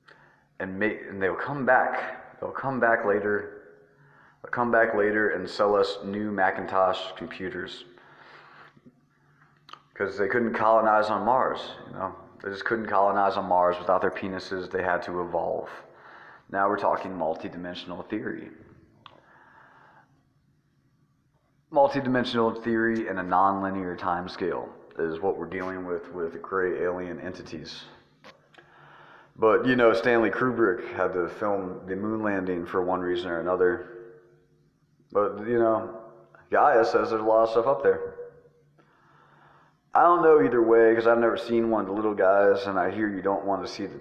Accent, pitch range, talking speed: American, 95-115 Hz, 155 wpm